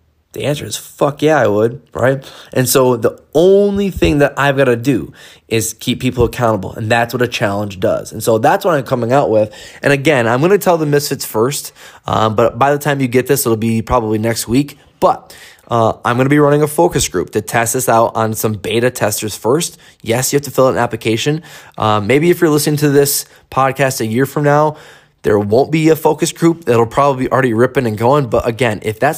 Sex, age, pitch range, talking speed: male, 20-39, 115-145 Hz, 235 wpm